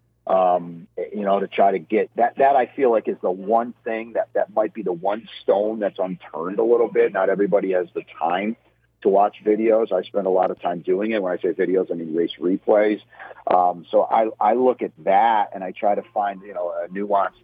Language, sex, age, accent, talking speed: English, male, 40-59, American, 235 wpm